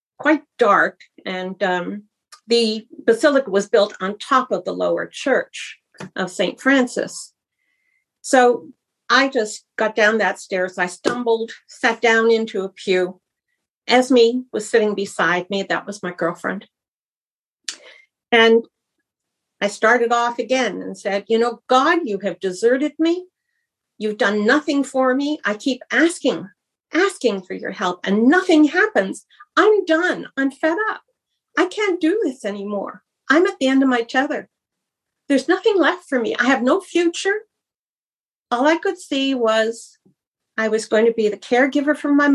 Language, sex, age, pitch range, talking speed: English, female, 50-69, 215-300 Hz, 155 wpm